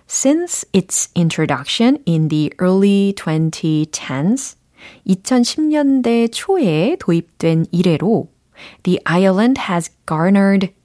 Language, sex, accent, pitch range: Korean, female, native, 165-240 Hz